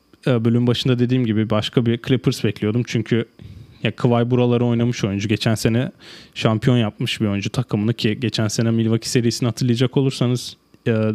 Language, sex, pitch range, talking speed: Turkish, male, 110-125 Hz, 145 wpm